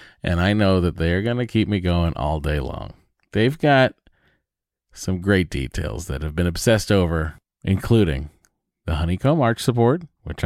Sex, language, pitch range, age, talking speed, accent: male, English, 85-115 Hz, 30-49, 165 wpm, American